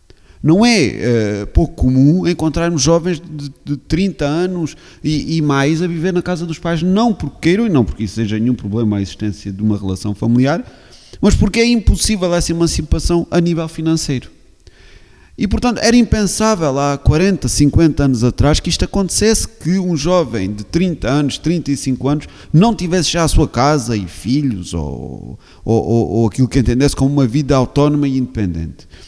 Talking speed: 175 wpm